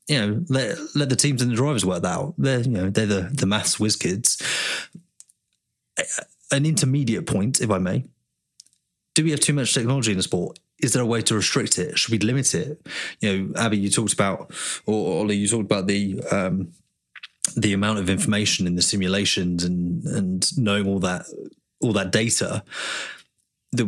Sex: male